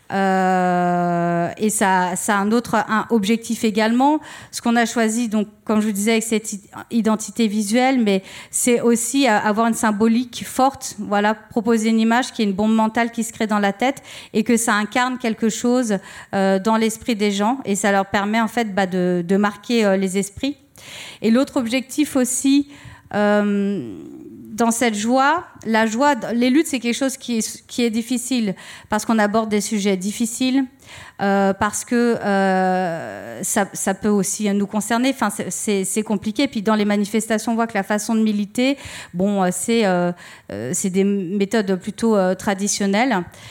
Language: French